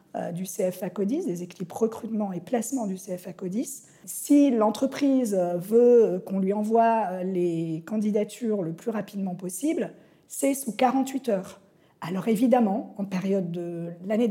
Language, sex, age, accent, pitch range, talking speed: French, female, 50-69, French, 185-235 Hz, 140 wpm